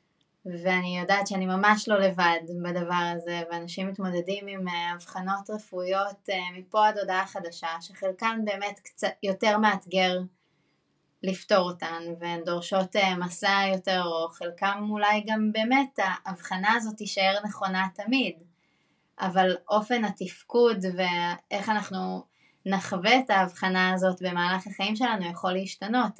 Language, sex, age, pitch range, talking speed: Hebrew, female, 20-39, 185-210 Hz, 120 wpm